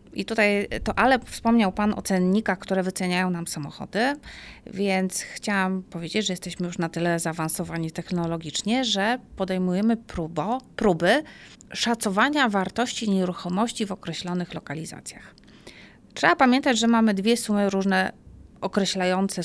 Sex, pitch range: female, 175-225 Hz